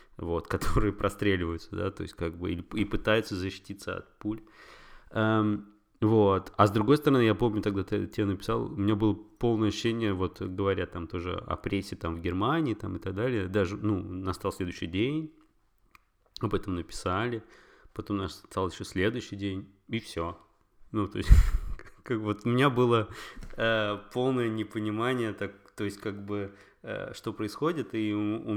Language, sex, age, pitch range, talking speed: Russian, male, 20-39, 95-110 Hz, 170 wpm